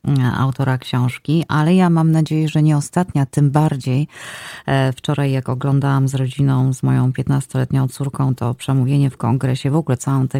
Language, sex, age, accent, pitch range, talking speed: Polish, female, 30-49, native, 135-160 Hz, 160 wpm